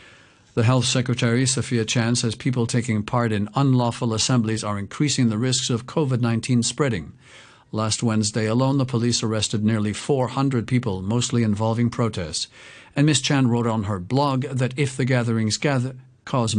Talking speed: 155 wpm